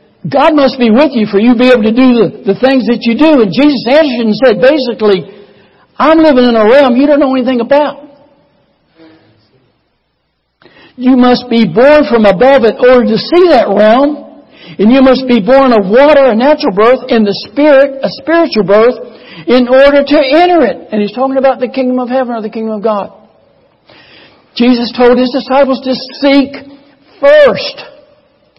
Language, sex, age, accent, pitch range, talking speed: English, male, 60-79, American, 225-290 Hz, 185 wpm